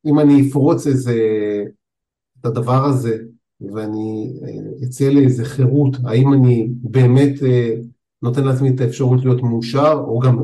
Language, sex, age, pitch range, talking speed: Hebrew, male, 50-69, 120-140 Hz, 125 wpm